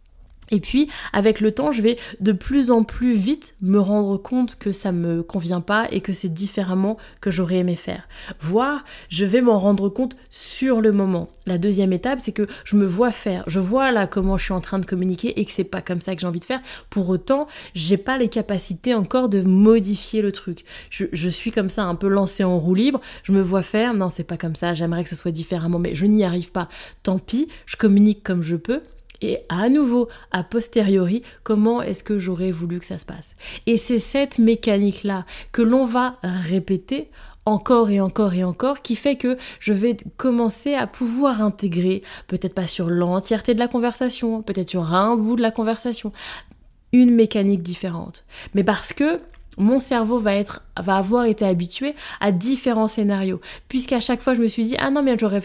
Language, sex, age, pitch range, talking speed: French, female, 20-39, 185-240 Hz, 210 wpm